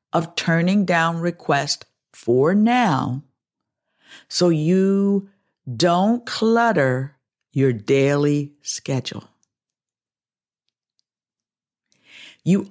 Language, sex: English, female